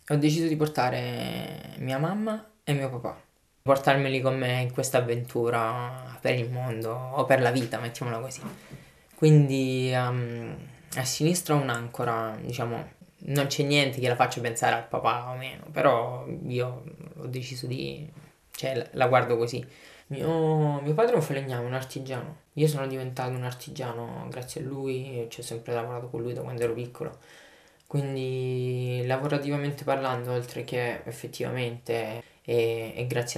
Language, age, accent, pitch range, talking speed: Italian, 20-39, native, 125-150 Hz, 155 wpm